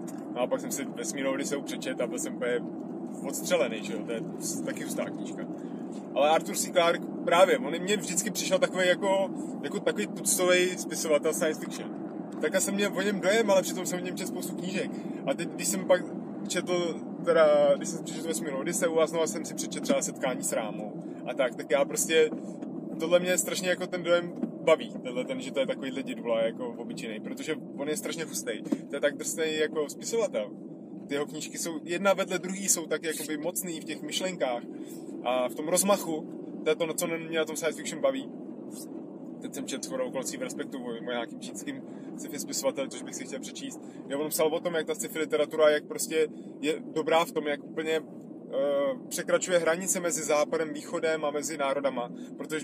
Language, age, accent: Czech, 20-39, native